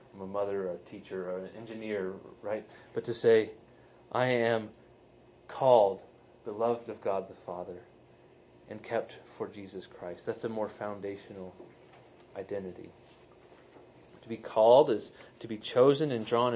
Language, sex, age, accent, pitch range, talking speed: English, male, 30-49, American, 100-120 Hz, 145 wpm